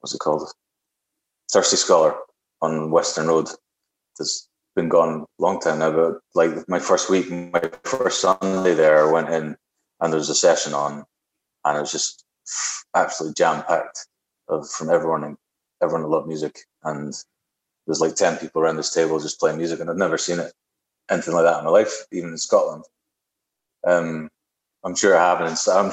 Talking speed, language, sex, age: 185 wpm, English, male, 30-49